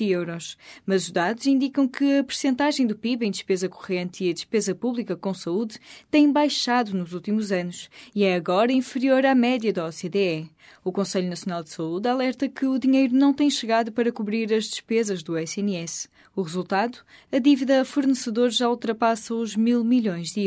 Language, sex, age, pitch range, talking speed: Portuguese, female, 20-39, 185-260 Hz, 180 wpm